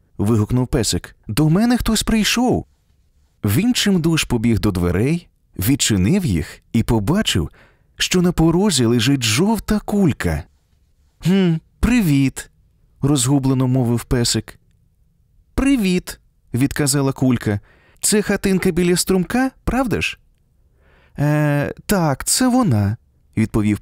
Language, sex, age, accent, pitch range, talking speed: Ukrainian, male, 30-49, native, 100-165 Hz, 100 wpm